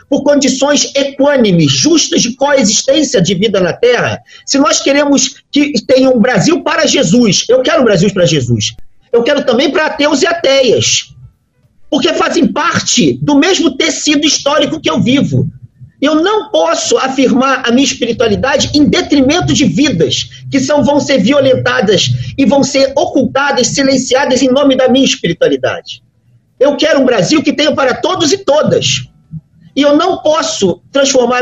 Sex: male